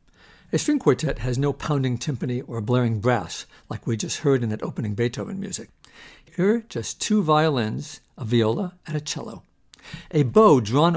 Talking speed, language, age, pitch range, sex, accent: 175 wpm, English, 60-79, 125-170 Hz, male, American